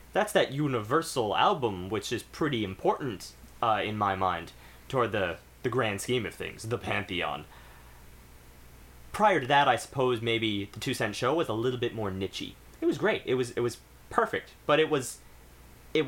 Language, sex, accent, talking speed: English, male, American, 185 wpm